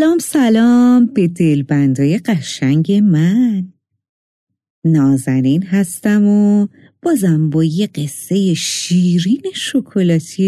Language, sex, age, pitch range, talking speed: Persian, female, 50-69, 160-240 Hz, 85 wpm